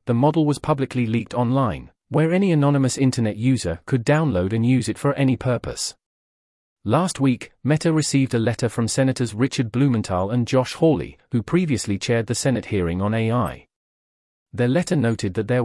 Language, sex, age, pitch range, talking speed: English, male, 40-59, 110-135 Hz, 175 wpm